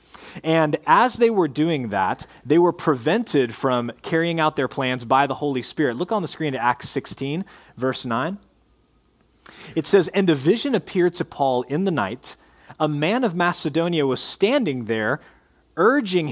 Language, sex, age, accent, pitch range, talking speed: English, male, 30-49, American, 130-165 Hz, 170 wpm